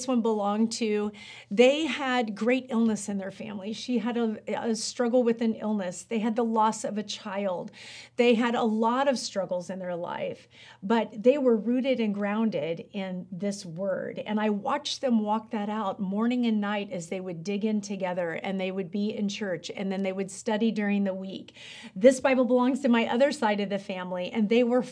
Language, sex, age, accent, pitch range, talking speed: English, female, 40-59, American, 200-245 Hz, 205 wpm